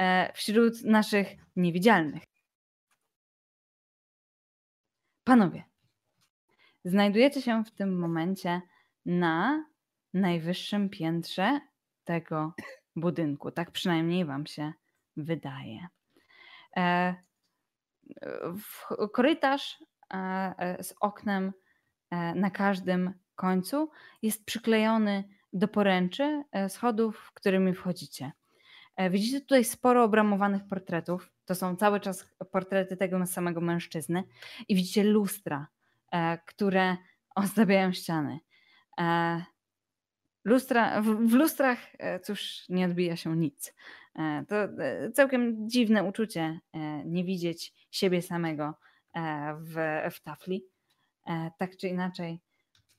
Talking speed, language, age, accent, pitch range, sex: 85 wpm, Polish, 10-29, native, 170-210 Hz, female